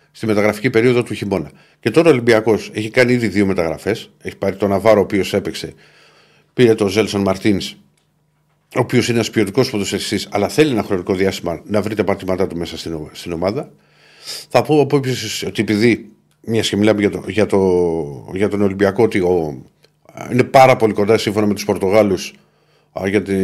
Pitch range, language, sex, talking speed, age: 95-125 Hz, Greek, male, 175 wpm, 50-69